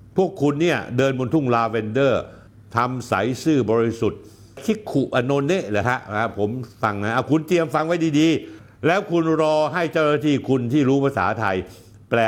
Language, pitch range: Thai, 105-155 Hz